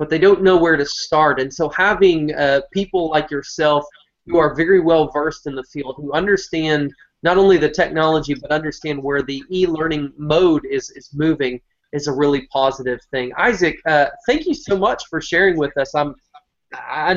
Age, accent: 20-39, American